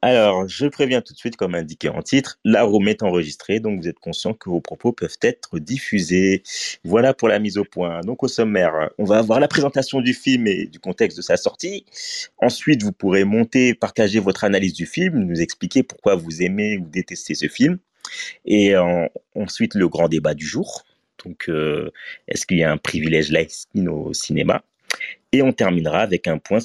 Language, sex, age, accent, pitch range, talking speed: French, male, 30-49, French, 85-130 Hz, 200 wpm